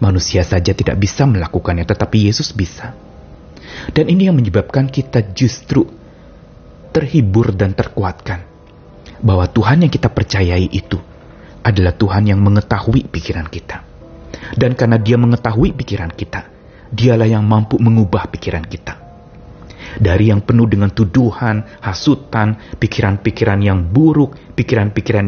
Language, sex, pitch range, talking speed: Indonesian, male, 90-125 Hz, 120 wpm